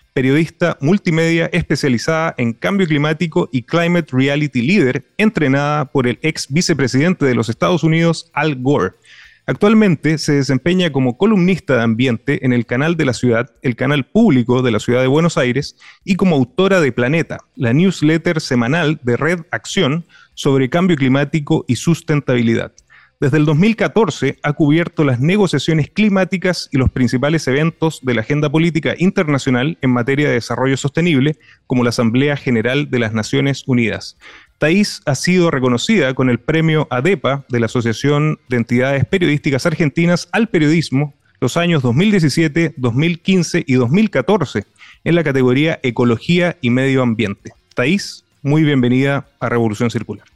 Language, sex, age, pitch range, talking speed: Spanish, male, 30-49, 125-165 Hz, 150 wpm